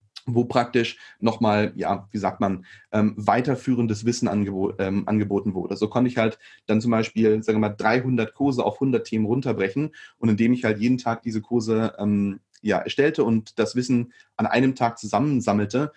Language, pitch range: German, 110-125 Hz